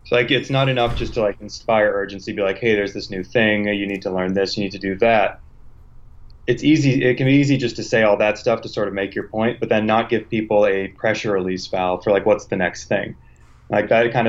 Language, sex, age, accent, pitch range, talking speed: English, male, 20-39, American, 95-115 Hz, 265 wpm